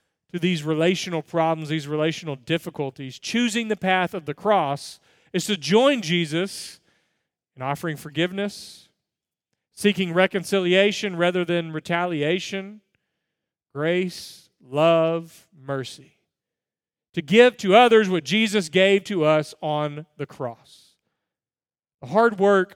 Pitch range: 155-195 Hz